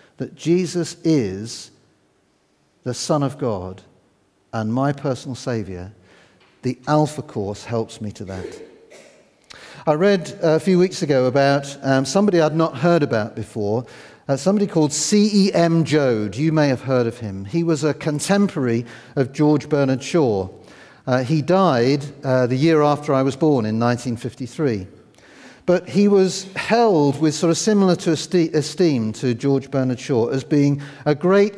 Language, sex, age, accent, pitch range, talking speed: English, male, 50-69, British, 125-170 Hz, 145 wpm